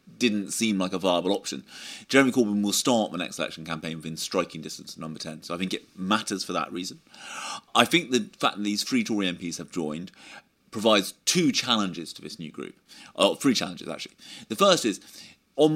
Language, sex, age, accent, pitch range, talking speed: English, male, 30-49, British, 95-130 Hz, 205 wpm